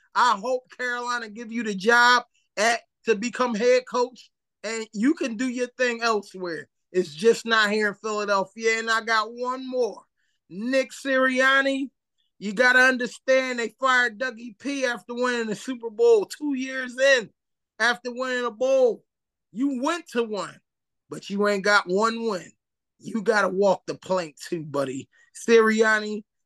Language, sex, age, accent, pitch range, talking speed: English, male, 20-39, American, 200-245 Hz, 160 wpm